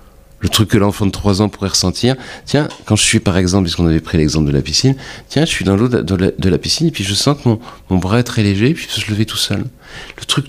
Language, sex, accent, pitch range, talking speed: French, male, French, 95-130 Hz, 315 wpm